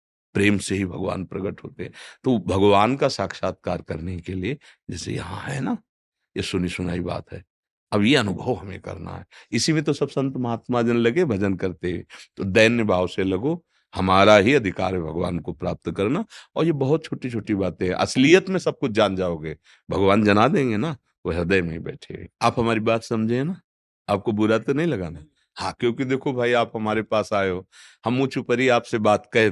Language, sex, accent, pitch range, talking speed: Hindi, male, native, 95-125 Hz, 195 wpm